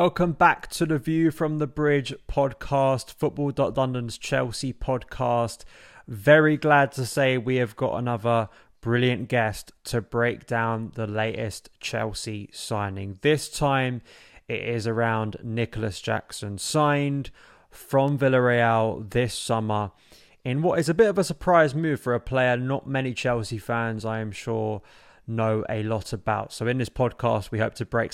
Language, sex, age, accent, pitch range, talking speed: English, male, 20-39, British, 110-135 Hz, 155 wpm